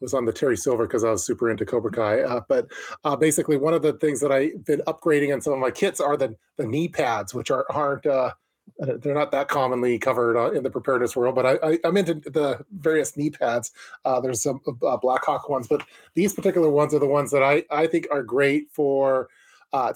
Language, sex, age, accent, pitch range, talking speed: English, male, 30-49, American, 130-150 Hz, 230 wpm